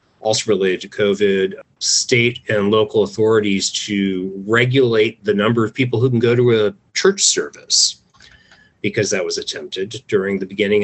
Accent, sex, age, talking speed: American, male, 40-59, 155 wpm